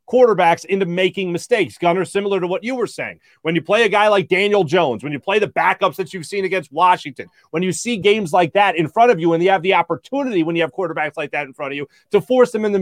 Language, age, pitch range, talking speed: English, 30-49, 170-205 Hz, 270 wpm